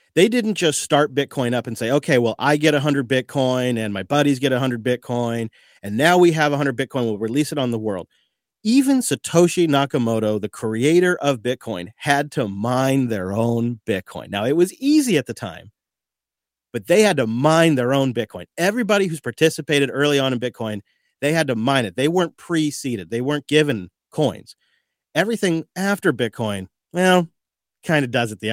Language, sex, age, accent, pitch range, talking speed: English, male, 40-59, American, 110-145 Hz, 185 wpm